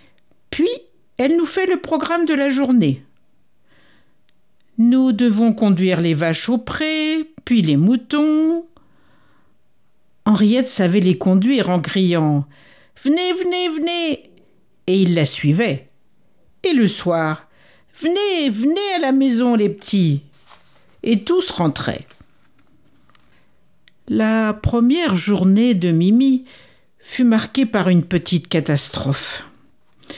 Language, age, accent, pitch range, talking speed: French, 60-79, French, 175-275 Hz, 120 wpm